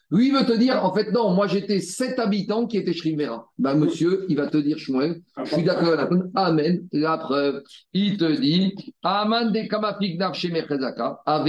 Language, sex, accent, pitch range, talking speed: French, male, French, 150-200 Hz, 170 wpm